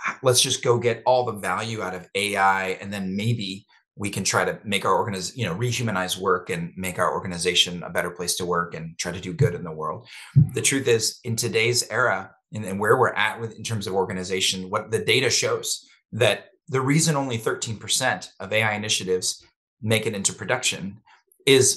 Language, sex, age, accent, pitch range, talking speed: English, male, 30-49, American, 100-130 Hz, 200 wpm